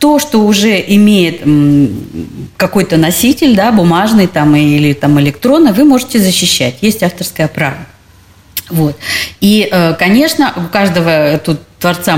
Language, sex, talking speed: Russian, female, 125 wpm